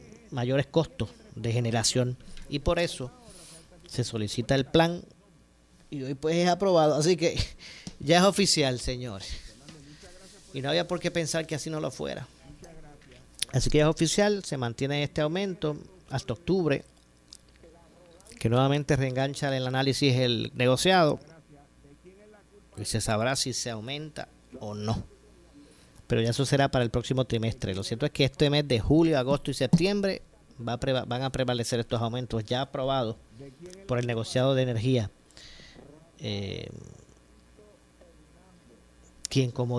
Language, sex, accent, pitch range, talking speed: Spanish, male, American, 115-145 Hz, 145 wpm